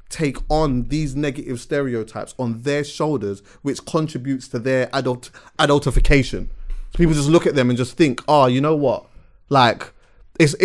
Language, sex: English, male